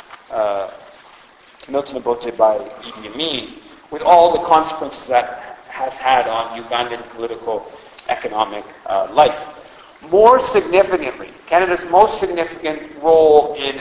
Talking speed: 115 wpm